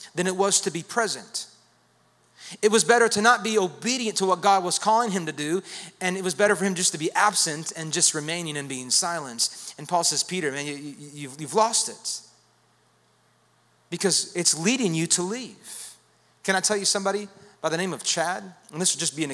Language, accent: English, American